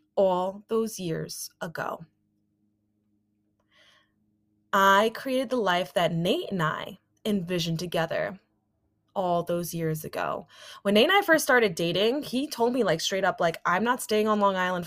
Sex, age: female, 20-39